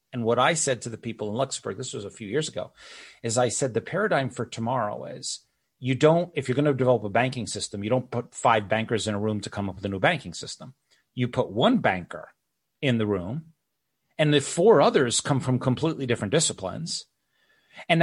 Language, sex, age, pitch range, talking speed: English, male, 40-59, 115-145 Hz, 220 wpm